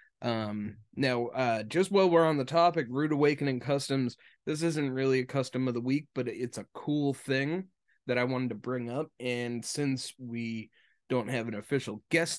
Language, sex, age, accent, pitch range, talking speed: English, male, 20-39, American, 115-140 Hz, 190 wpm